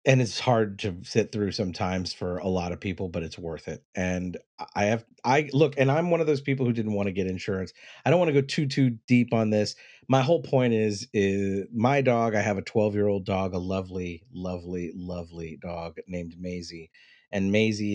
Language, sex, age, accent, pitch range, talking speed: English, male, 40-59, American, 90-115 Hz, 220 wpm